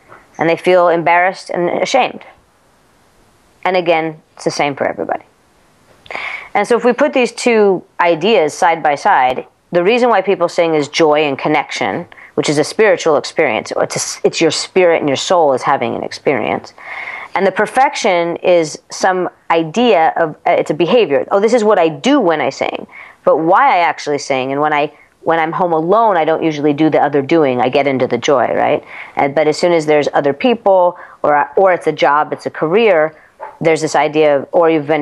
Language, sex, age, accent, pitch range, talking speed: English, female, 30-49, American, 150-190 Hz, 200 wpm